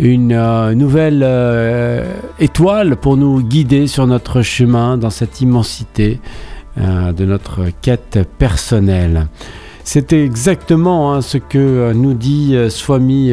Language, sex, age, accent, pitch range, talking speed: French, male, 50-69, French, 110-140 Hz, 125 wpm